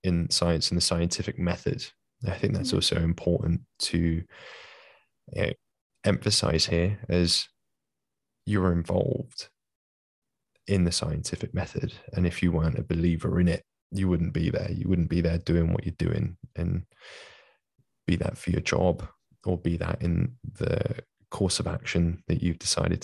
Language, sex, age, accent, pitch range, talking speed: English, male, 20-39, British, 85-95 Hz, 150 wpm